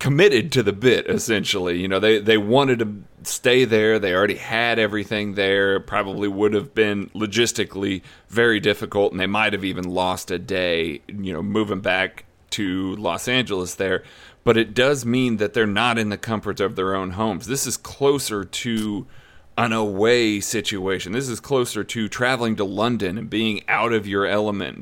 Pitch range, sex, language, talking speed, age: 100-120 Hz, male, English, 180 wpm, 30-49